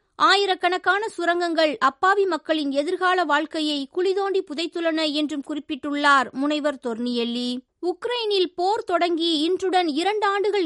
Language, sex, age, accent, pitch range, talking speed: Tamil, female, 20-39, native, 300-360 Hz, 95 wpm